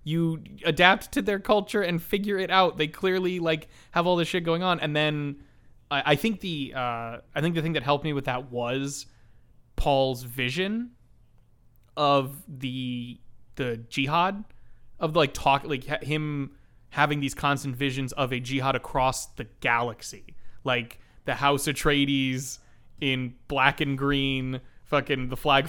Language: English